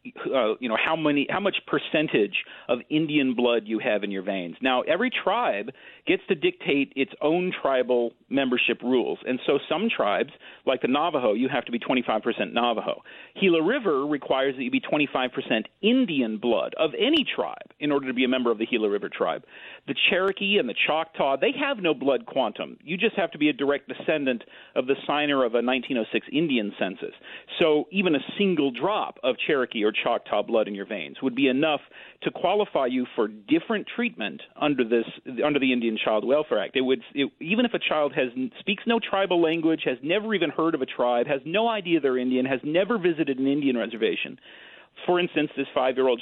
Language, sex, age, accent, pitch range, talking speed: English, male, 40-59, American, 125-185 Hz, 200 wpm